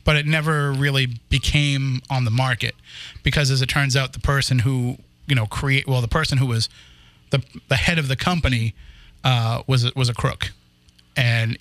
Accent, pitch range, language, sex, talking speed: American, 115-145 Hz, English, male, 185 wpm